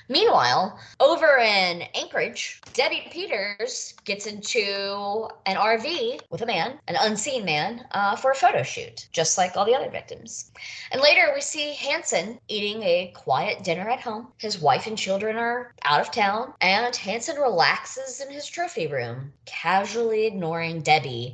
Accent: American